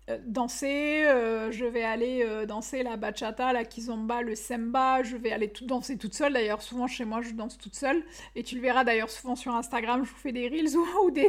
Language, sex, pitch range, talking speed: French, female, 235-275 Hz, 235 wpm